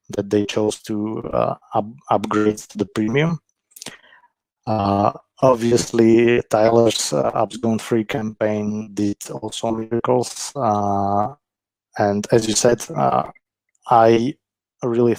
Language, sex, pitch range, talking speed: English, male, 105-115 Hz, 115 wpm